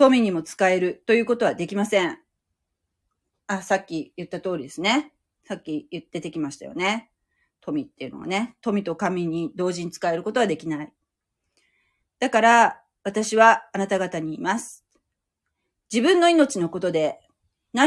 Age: 40-59